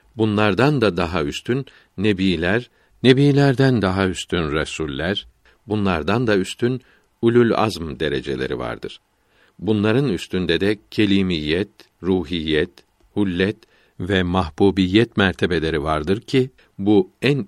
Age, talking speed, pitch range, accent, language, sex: 60-79, 100 wpm, 95-120 Hz, native, Turkish, male